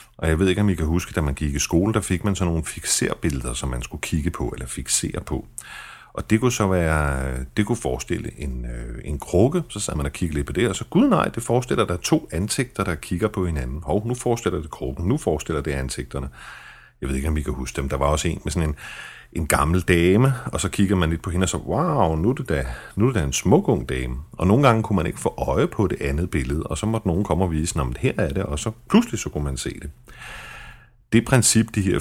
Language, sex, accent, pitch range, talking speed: Danish, male, native, 70-100 Hz, 275 wpm